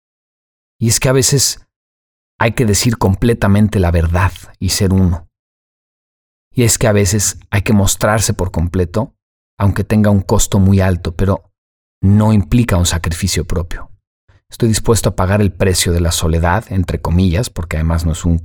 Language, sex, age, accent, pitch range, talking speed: Spanish, male, 40-59, Mexican, 90-105 Hz, 170 wpm